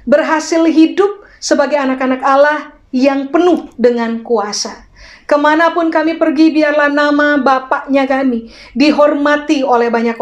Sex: female